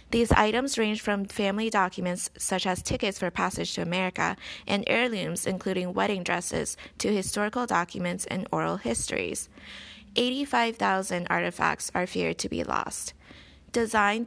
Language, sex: English, female